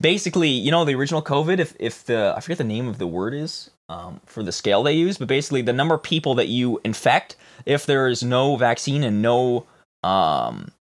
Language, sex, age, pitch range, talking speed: English, male, 20-39, 125-165 Hz, 220 wpm